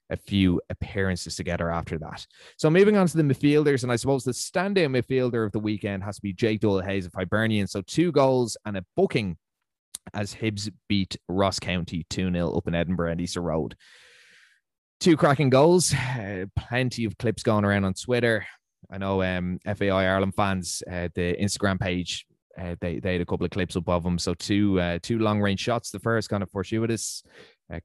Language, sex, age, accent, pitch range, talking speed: English, male, 20-39, Irish, 90-110 Hz, 190 wpm